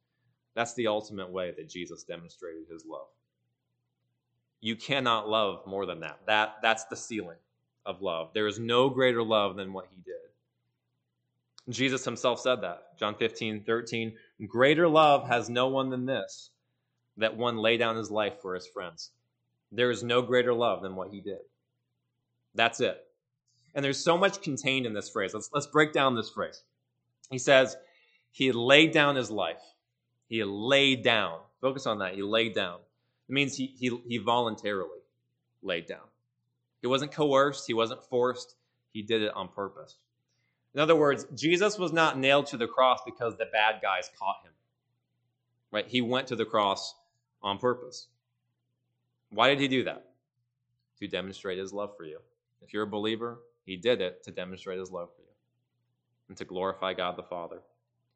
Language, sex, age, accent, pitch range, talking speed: English, male, 30-49, American, 110-130 Hz, 170 wpm